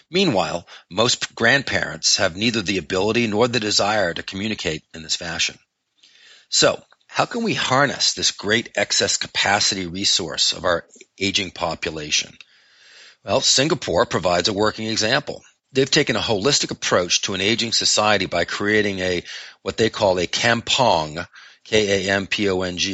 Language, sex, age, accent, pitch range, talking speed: English, male, 40-59, American, 95-115 Hz, 140 wpm